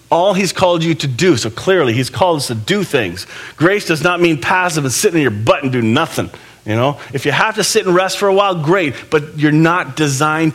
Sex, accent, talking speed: male, American, 250 wpm